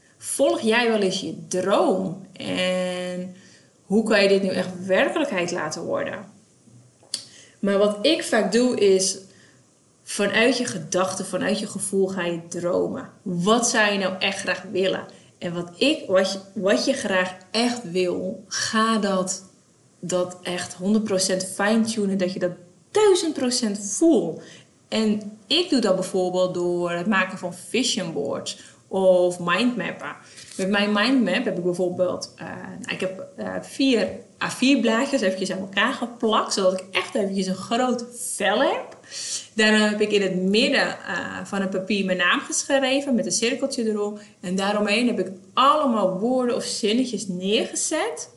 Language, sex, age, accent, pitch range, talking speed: Dutch, female, 20-39, Dutch, 185-225 Hz, 155 wpm